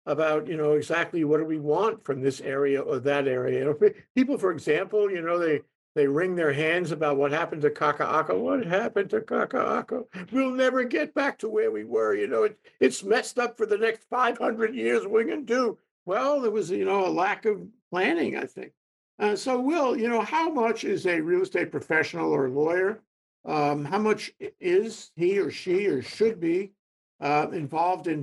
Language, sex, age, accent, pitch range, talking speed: English, male, 60-79, American, 150-240 Hz, 200 wpm